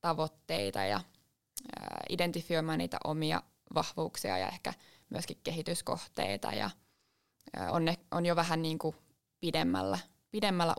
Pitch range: 150-170 Hz